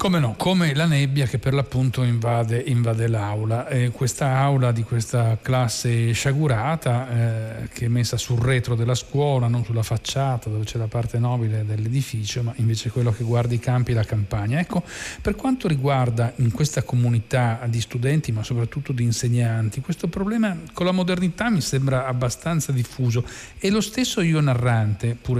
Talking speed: 170 wpm